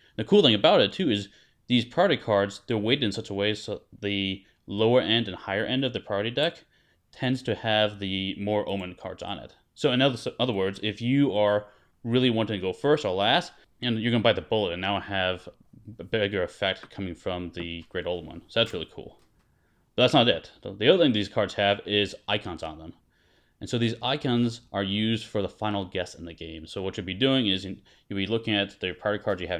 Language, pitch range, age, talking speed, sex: English, 95-115 Hz, 20-39, 235 wpm, male